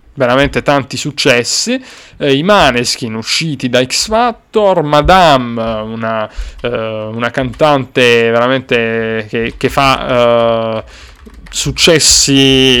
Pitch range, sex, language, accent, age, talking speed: 110-135 Hz, male, Italian, native, 30-49, 100 wpm